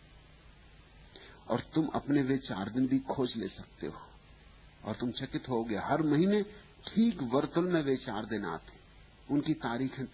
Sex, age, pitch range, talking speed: male, 50-69, 105-150 Hz, 150 wpm